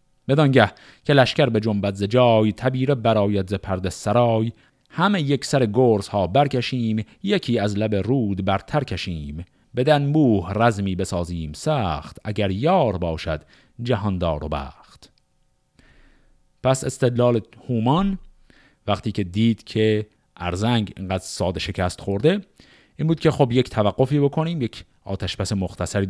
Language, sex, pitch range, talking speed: Persian, male, 95-130 Hz, 130 wpm